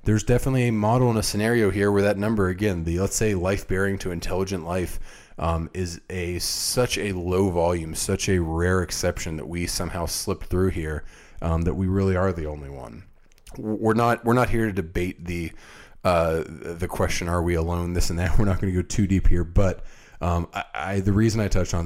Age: 30-49